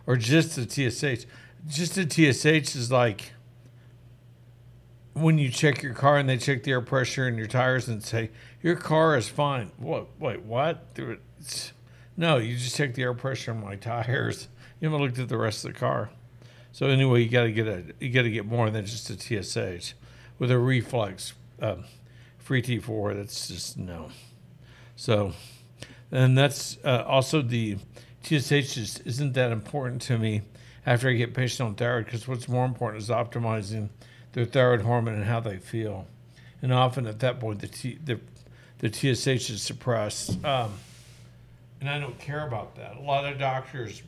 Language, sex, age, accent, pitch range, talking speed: English, male, 60-79, American, 115-130 Hz, 180 wpm